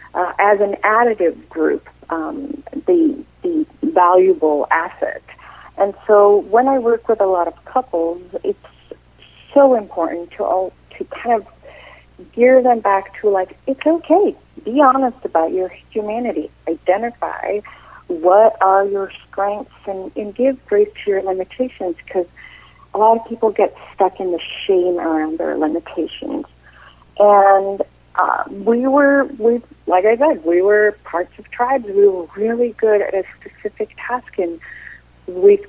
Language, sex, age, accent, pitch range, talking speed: English, female, 50-69, American, 180-255 Hz, 150 wpm